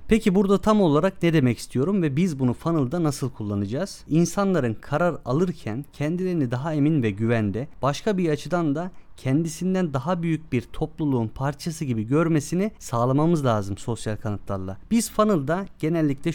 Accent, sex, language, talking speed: native, male, Turkish, 145 wpm